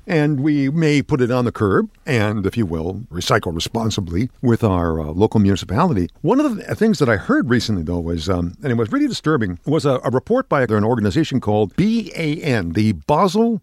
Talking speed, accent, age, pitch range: 205 wpm, American, 50-69, 105-150 Hz